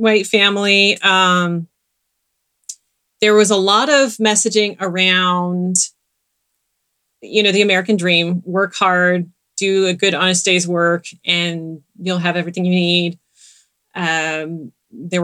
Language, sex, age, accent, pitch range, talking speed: English, female, 30-49, American, 175-210 Hz, 120 wpm